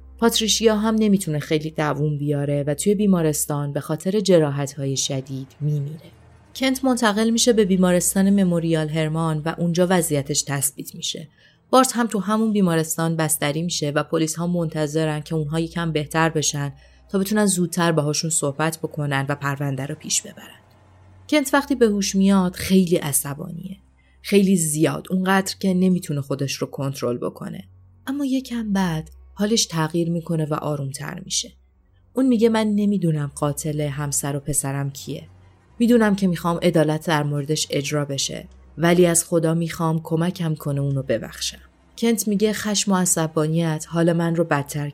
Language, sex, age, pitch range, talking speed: Persian, female, 30-49, 145-190 Hz, 150 wpm